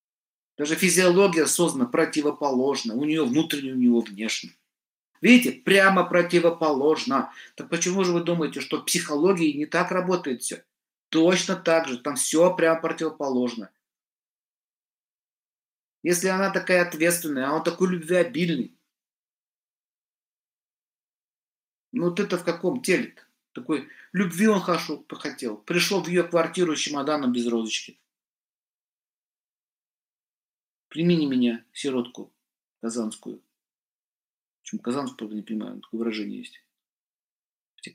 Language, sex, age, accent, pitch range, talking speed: Russian, male, 50-69, native, 130-175 Hz, 115 wpm